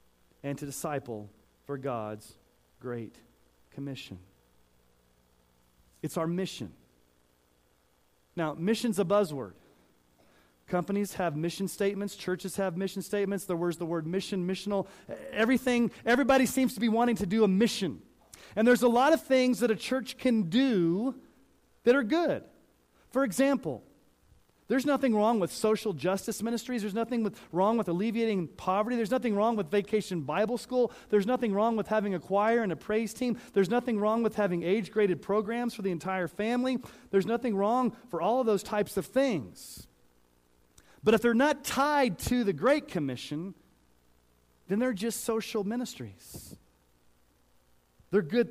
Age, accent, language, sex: 40-59, American, English, male